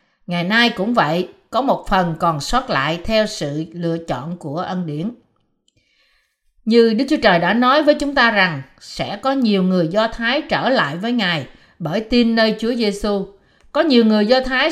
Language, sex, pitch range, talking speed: Vietnamese, female, 180-250 Hz, 190 wpm